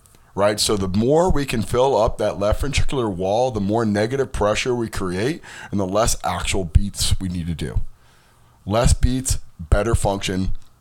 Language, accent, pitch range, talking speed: English, American, 85-110 Hz, 170 wpm